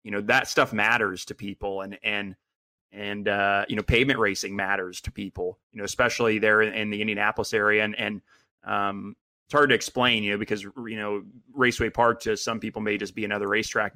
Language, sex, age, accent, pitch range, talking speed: English, male, 20-39, American, 100-110 Hz, 205 wpm